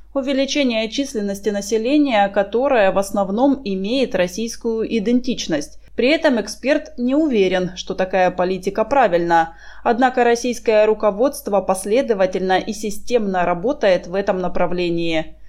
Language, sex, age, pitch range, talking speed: Russian, female, 20-39, 180-245 Hz, 110 wpm